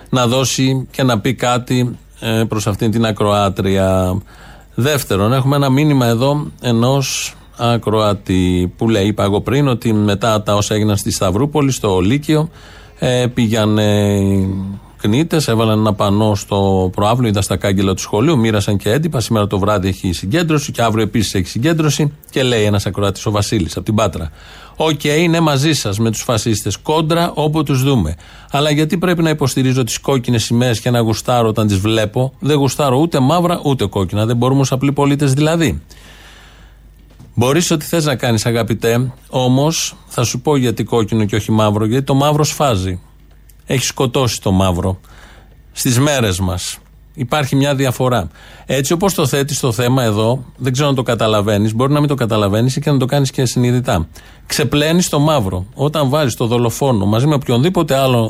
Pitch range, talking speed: 105-140 Hz, 170 wpm